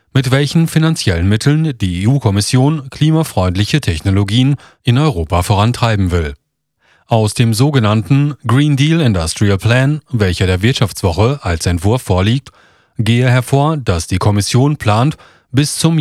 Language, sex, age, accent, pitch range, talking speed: German, male, 40-59, German, 100-140 Hz, 125 wpm